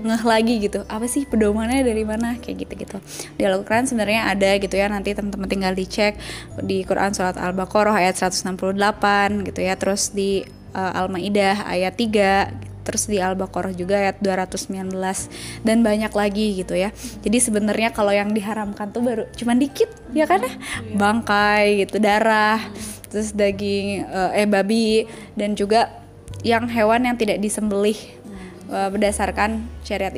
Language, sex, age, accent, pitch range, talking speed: Indonesian, female, 20-39, native, 195-225 Hz, 145 wpm